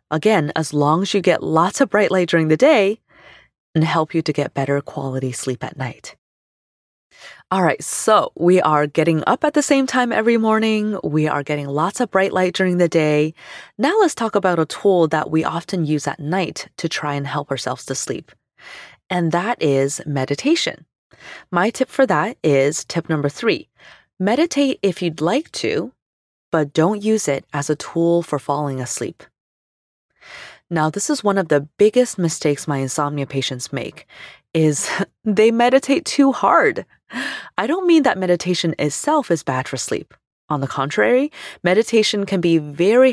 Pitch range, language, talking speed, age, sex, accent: 150-220 Hz, English, 175 wpm, 20-39, female, American